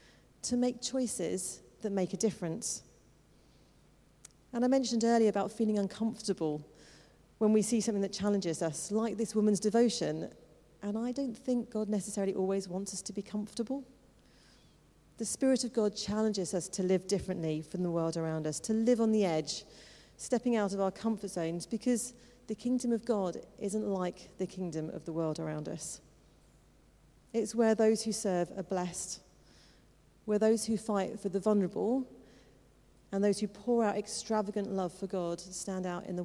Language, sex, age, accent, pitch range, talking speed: English, female, 40-59, British, 185-225 Hz, 170 wpm